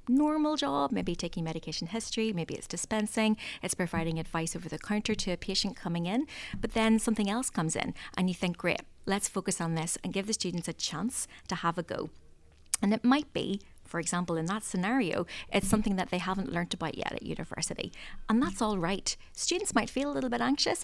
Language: English